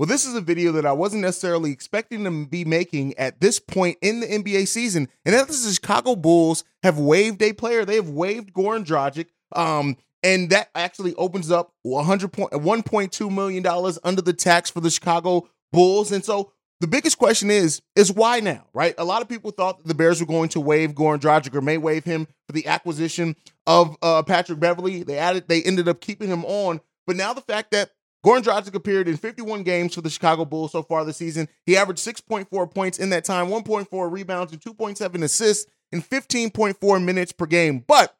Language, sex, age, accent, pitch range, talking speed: English, male, 30-49, American, 165-205 Hz, 215 wpm